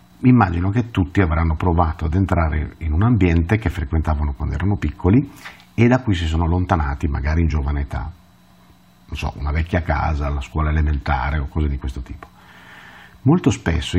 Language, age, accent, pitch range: Italian, 50-69, native, 75-105 Hz